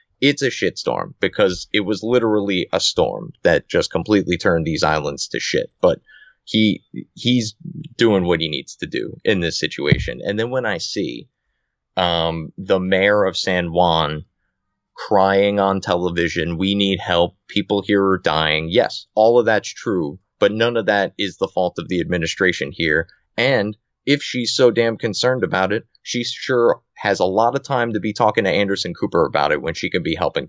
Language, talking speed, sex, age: English, 185 wpm, male, 30-49